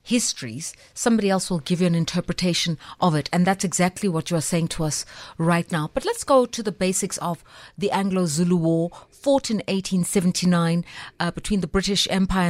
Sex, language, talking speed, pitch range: female, English, 185 wpm, 170-215 Hz